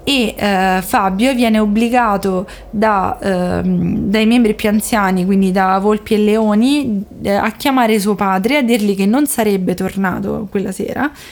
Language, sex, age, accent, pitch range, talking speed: Italian, female, 20-39, native, 195-225 Hz, 150 wpm